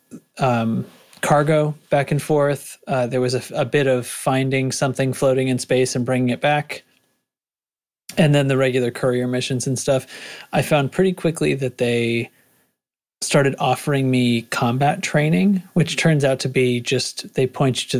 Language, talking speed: English, 165 wpm